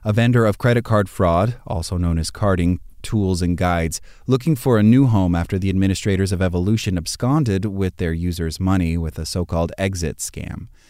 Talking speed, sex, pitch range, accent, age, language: 180 wpm, male, 90-115 Hz, American, 30-49, English